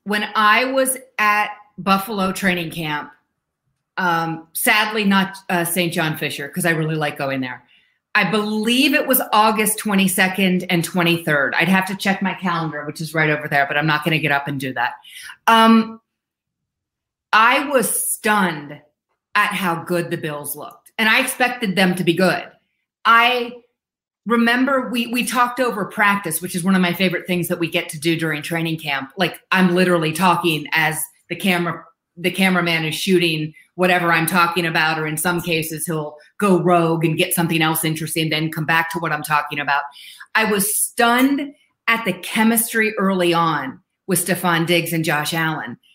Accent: American